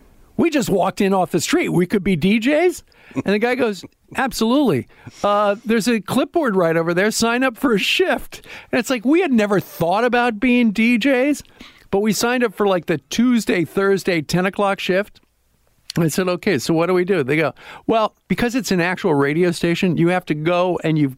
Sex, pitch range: male, 160-215 Hz